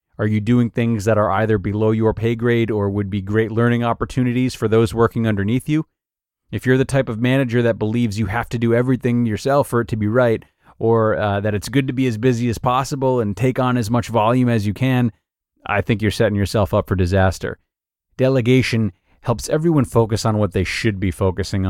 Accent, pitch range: American, 100-125 Hz